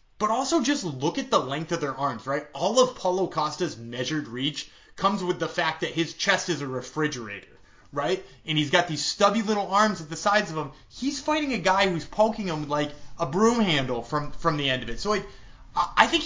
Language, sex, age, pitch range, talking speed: English, male, 20-39, 150-215 Hz, 230 wpm